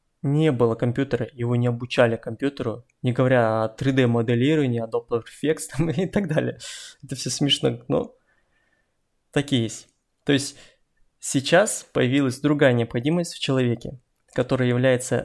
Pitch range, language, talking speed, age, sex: 125-150 Hz, Russian, 125 wpm, 20-39, male